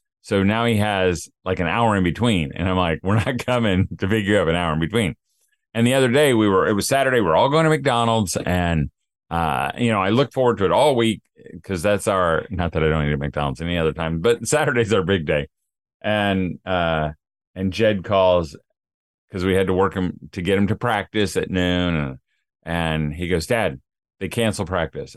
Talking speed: 215 wpm